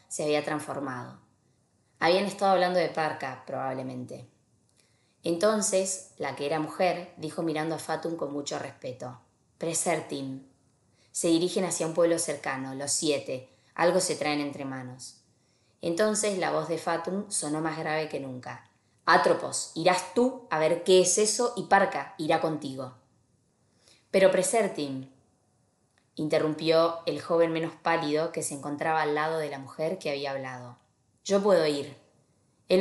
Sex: female